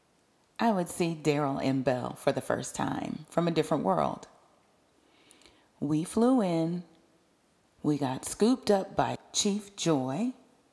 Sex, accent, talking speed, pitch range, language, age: female, American, 135 wpm, 145-210 Hz, English, 40-59